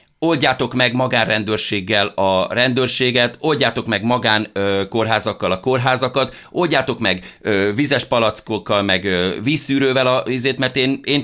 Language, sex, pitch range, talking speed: Hungarian, male, 105-140 Hz, 120 wpm